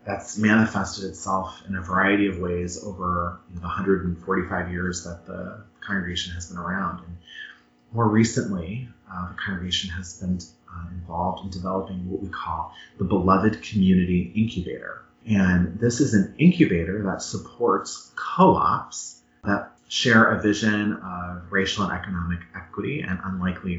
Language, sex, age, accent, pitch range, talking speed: English, male, 30-49, American, 90-110 Hz, 140 wpm